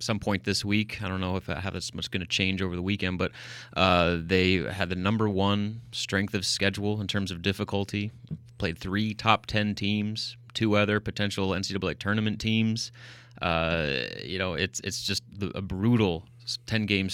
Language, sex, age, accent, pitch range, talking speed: English, male, 30-49, American, 95-105 Hz, 185 wpm